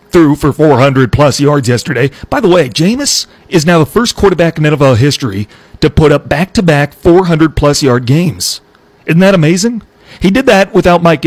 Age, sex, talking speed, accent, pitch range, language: 40-59, male, 170 wpm, American, 130-170 Hz, English